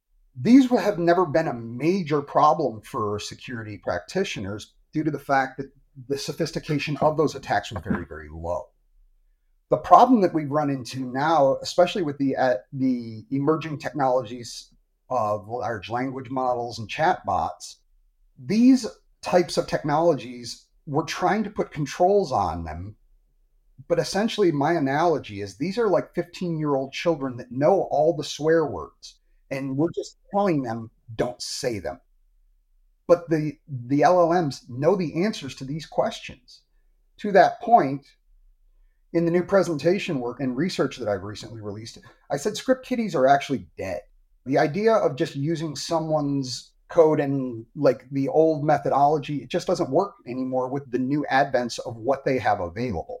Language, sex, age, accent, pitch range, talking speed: English, male, 30-49, American, 125-170 Hz, 150 wpm